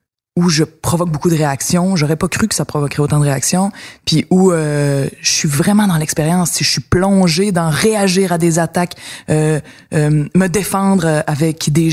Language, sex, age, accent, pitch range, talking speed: French, female, 20-39, Canadian, 145-180 Hz, 190 wpm